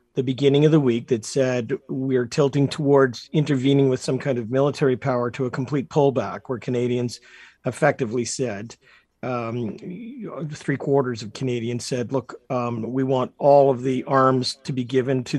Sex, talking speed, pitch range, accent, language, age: male, 170 wpm, 130-155 Hz, American, English, 50-69